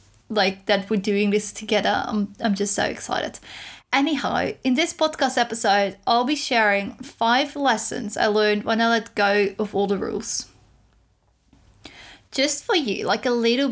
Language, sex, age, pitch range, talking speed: English, female, 20-39, 205-250 Hz, 160 wpm